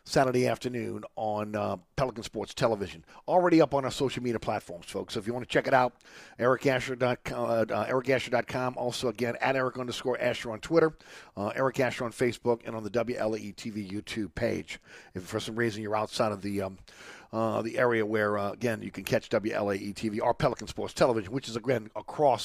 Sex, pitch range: male, 115-140 Hz